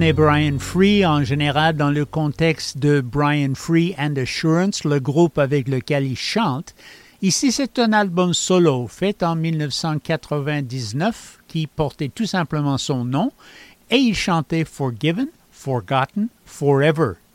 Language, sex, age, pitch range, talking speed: English, male, 60-79, 140-185 Hz, 135 wpm